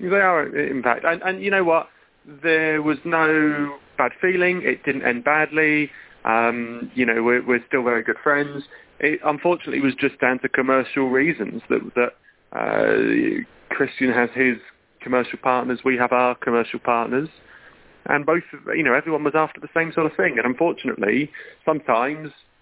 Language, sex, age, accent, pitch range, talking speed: English, male, 30-49, British, 120-155 Hz, 170 wpm